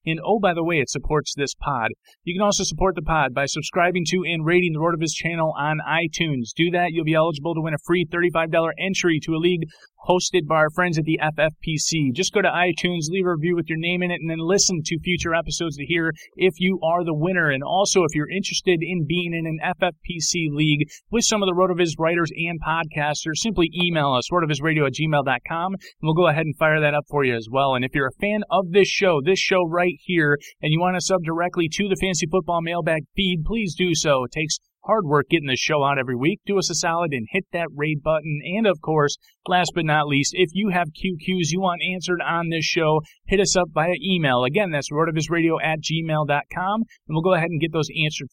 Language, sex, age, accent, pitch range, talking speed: English, male, 30-49, American, 150-180 Hz, 235 wpm